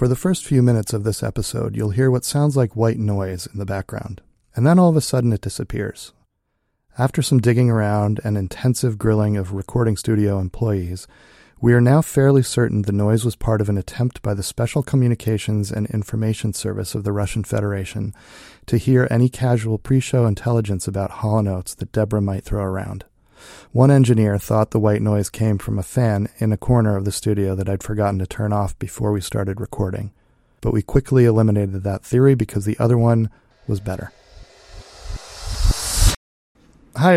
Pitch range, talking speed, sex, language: 105-125 Hz, 180 wpm, male, English